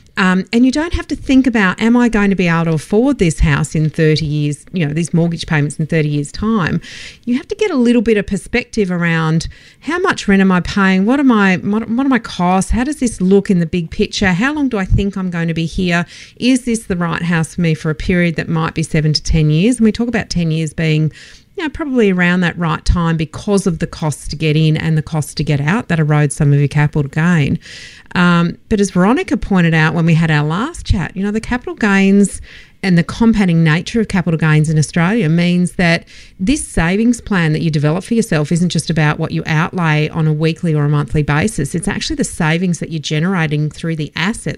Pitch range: 155-205 Hz